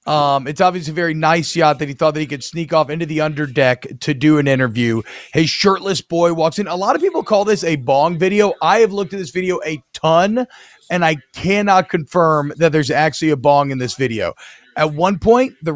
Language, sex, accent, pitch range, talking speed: English, male, American, 150-185 Hz, 230 wpm